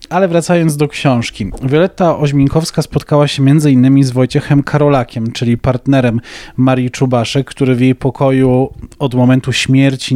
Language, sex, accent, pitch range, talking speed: Polish, male, native, 125-150 Hz, 140 wpm